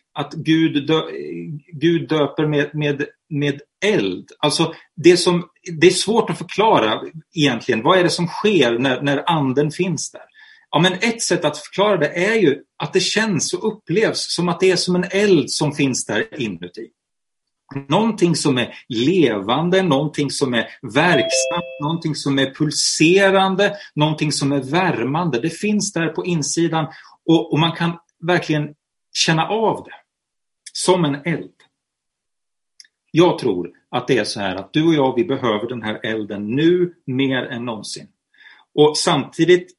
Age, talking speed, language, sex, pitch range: 30-49, 160 wpm, Swedish, male, 135-175 Hz